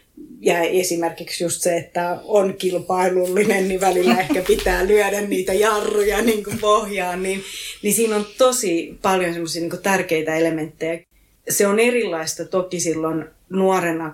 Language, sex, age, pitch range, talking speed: Finnish, female, 30-49, 170-210 Hz, 140 wpm